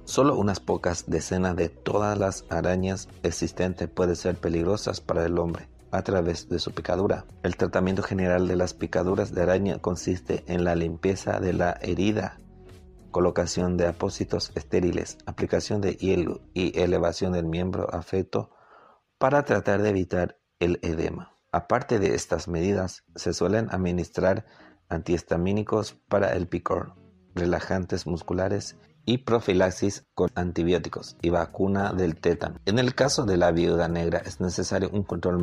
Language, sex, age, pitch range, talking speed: Spanish, male, 50-69, 85-95 Hz, 145 wpm